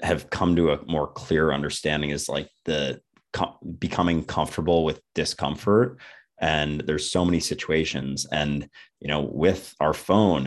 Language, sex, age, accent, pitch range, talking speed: English, male, 30-49, American, 75-90 Hz, 145 wpm